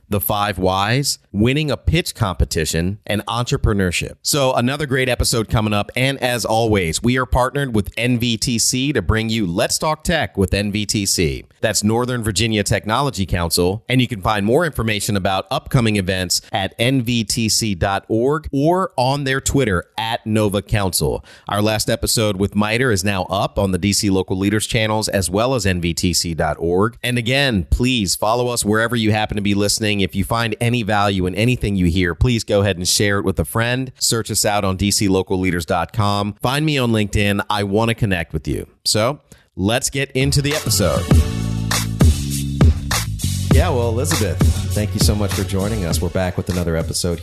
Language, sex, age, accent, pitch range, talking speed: English, male, 40-59, American, 95-115 Hz, 175 wpm